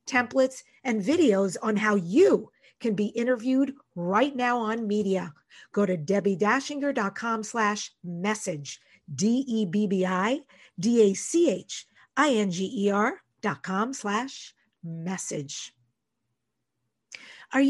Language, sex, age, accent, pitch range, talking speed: English, female, 50-69, American, 200-265 Hz, 100 wpm